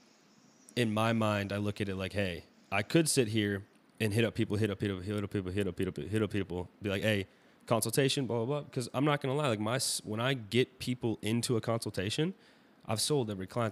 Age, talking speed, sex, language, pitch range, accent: 20-39, 250 wpm, male, English, 95-120 Hz, American